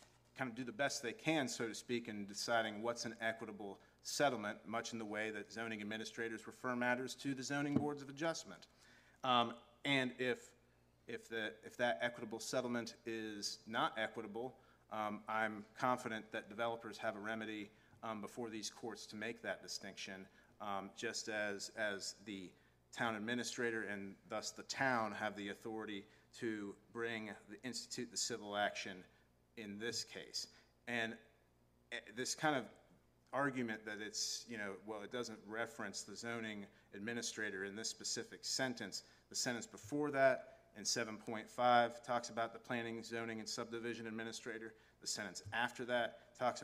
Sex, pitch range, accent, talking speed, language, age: male, 105-120 Hz, American, 155 wpm, English, 40-59